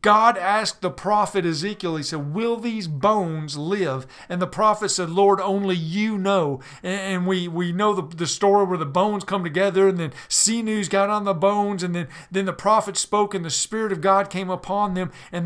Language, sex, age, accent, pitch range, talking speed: English, male, 50-69, American, 170-200 Hz, 210 wpm